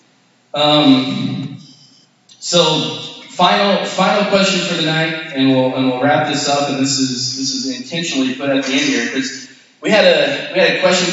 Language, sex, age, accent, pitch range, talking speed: English, male, 20-39, American, 130-160 Hz, 185 wpm